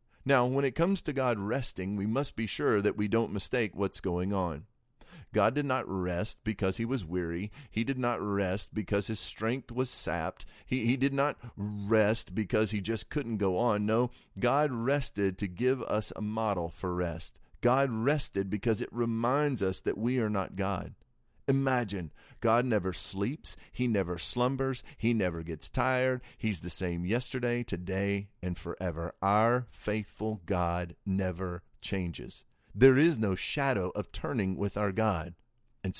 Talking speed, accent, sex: 165 wpm, American, male